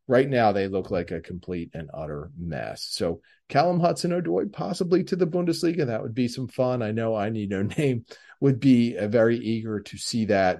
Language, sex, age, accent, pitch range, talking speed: English, male, 40-59, American, 95-135 Hz, 200 wpm